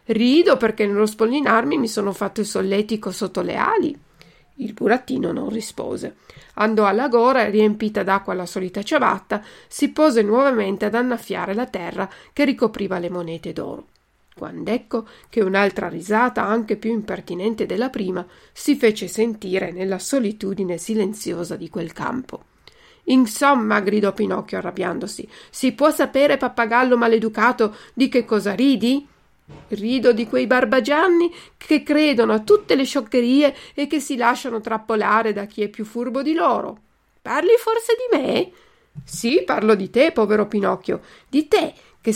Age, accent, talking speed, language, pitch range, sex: 50-69, native, 150 wpm, Italian, 205-265 Hz, female